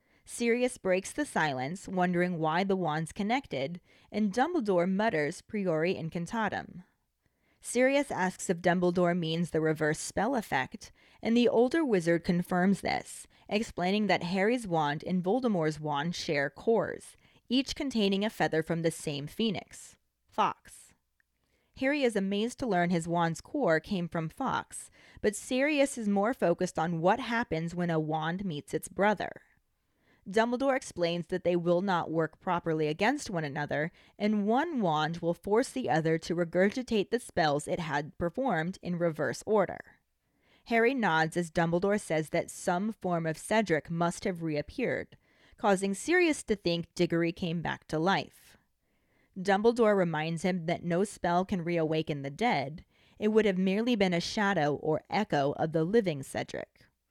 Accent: American